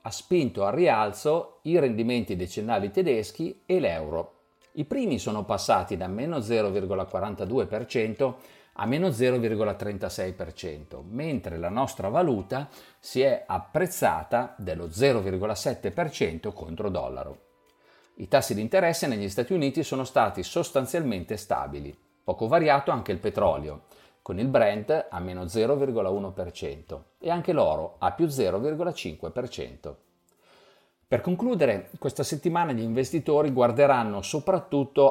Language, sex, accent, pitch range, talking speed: Italian, male, native, 100-150 Hz, 115 wpm